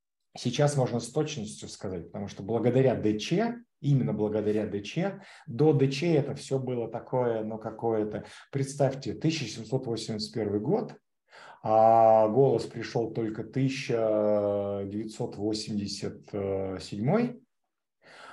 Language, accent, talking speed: Russian, native, 95 wpm